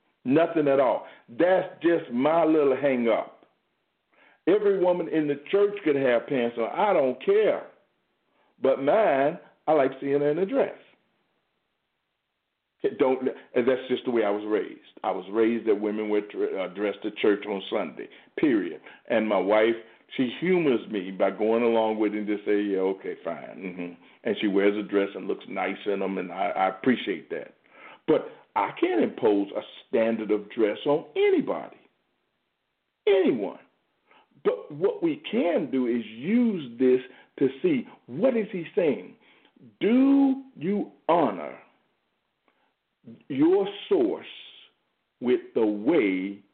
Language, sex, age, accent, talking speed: English, male, 50-69, American, 150 wpm